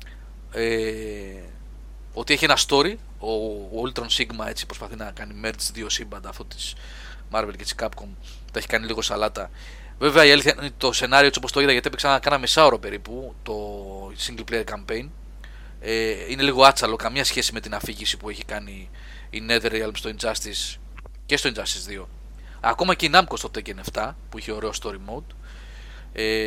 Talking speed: 165 wpm